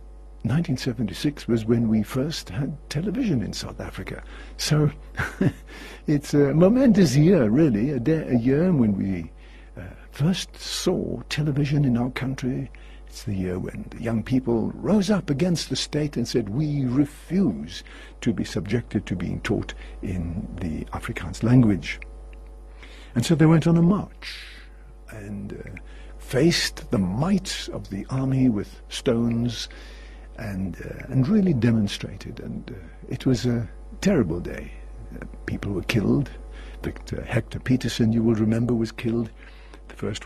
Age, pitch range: 60-79, 105-150 Hz